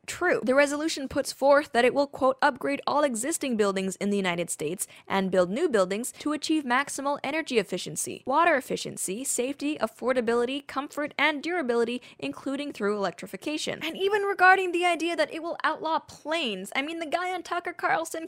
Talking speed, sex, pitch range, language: 175 wpm, female, 225-320 Hz, English